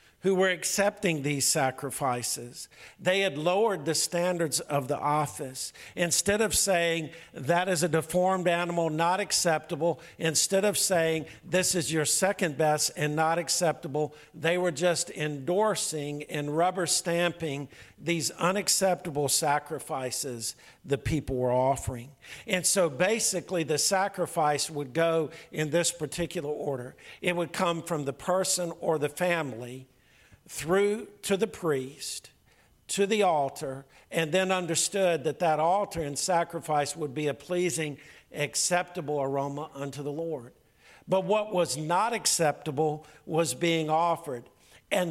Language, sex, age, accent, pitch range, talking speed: English, male, 50-69, American, 145-180 Hz, 135 wpm